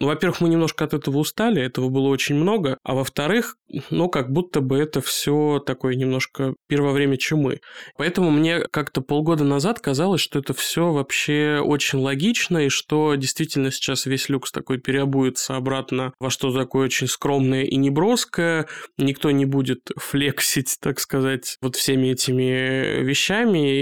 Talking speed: 155 wpm